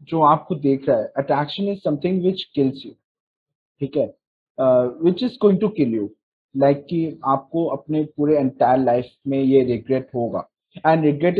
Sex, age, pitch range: male, 20-39, 130-160 Hz